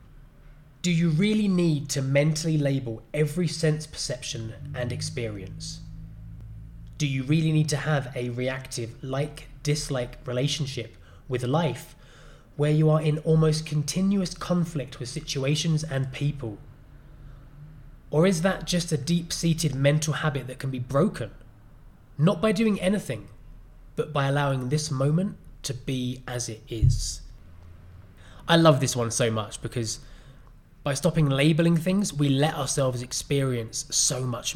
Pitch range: 125-155 Hz